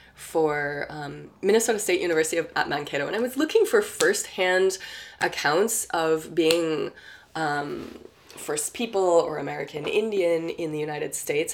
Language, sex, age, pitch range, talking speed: English, female, 20-39, 155-225 Hz, 135 wpm